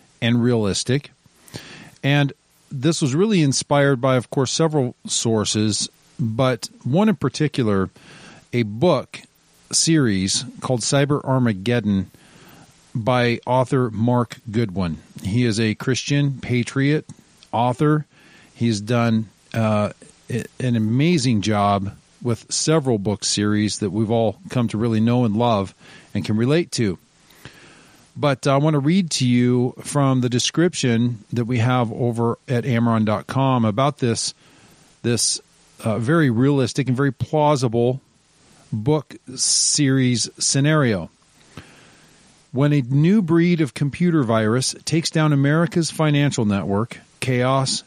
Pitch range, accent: 115-145 Hz, American